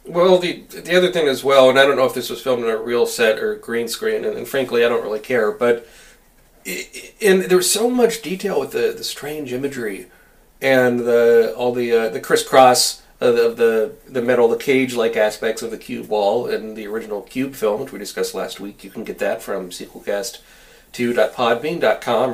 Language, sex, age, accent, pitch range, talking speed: English, male, 40-59, American, 120-195 Hz, 200 wpm